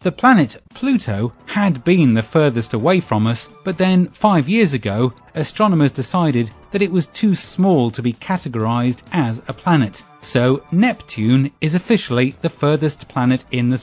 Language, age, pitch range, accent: English, 30-49, 120-170 Hz, British